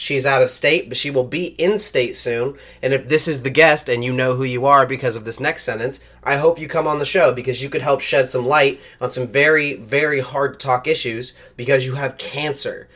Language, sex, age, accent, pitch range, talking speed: English, male, 20-39, American, 125-160 Hz, 240 wpm